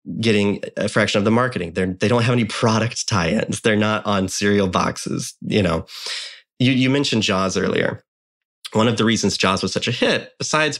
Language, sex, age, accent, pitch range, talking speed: English, male, 20-39, American, 100-140 Hz, 195 wpm